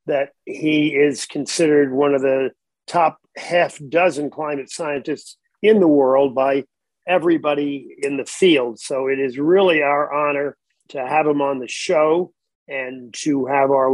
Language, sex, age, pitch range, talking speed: English, male, 50-69, 140-180 Hz, 155 wpm